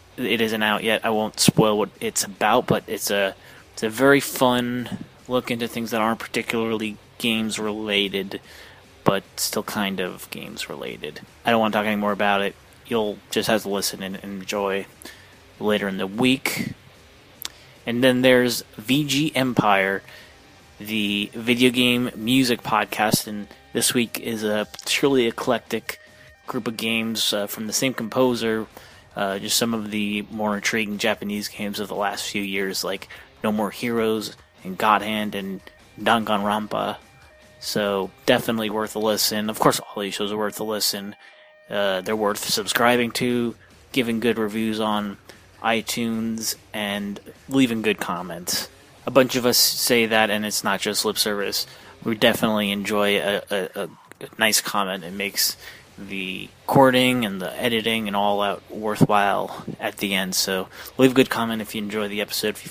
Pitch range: 105-120 Hz